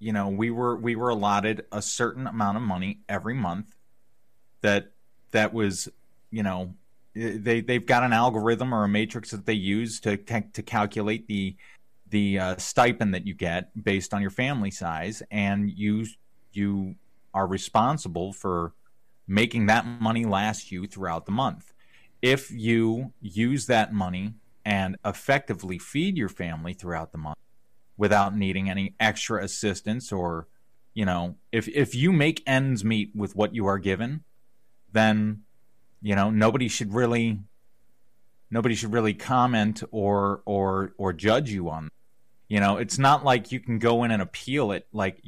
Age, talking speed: 30-49, 160 wpm